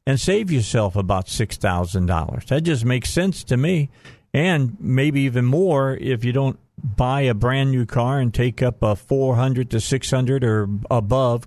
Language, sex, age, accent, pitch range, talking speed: English, male, 50-69, American, 115-140 Hz, 165 wpm